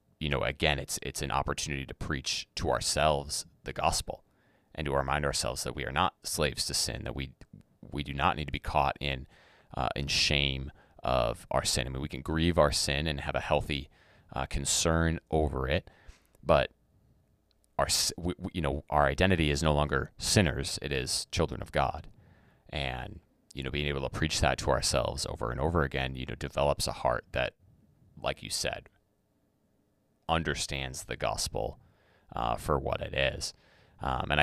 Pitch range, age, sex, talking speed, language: 70-80 Hz, 30-49, male, 185 wpm, English